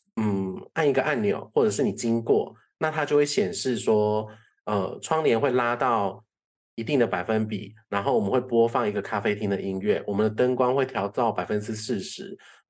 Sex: male